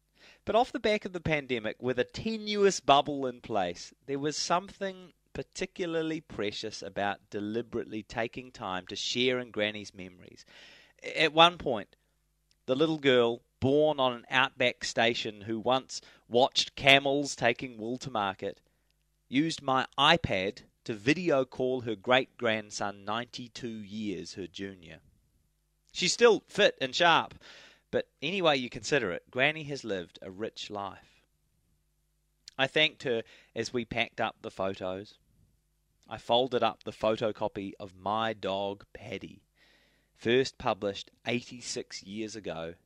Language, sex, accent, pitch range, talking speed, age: English, male, Australian, 100-150 Hz, 135 wpm, 30-49